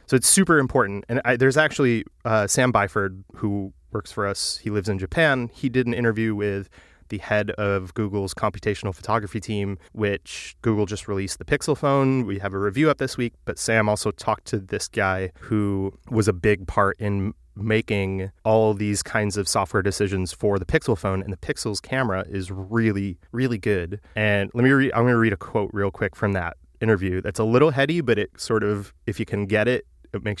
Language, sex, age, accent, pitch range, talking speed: English, male, 20-39, American, 100-115 Hz, 210 wpm